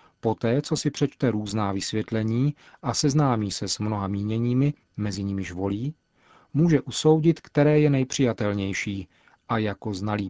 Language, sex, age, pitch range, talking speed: Czech, male, 40-59, 110-130 Hz, 135 wpm